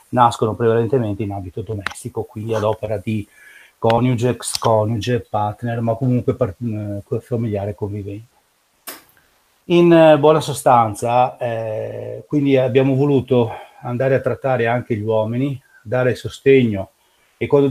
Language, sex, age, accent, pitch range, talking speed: Italian, male, 40-59, native, 110-125 Hz, 110 wpm